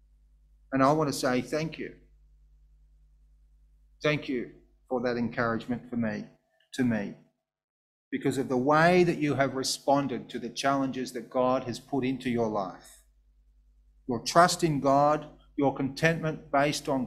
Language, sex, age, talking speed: English, male, 40-59, 150 wpm